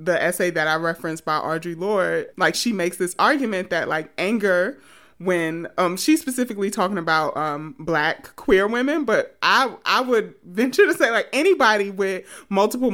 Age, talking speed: 30-49, 170 wpm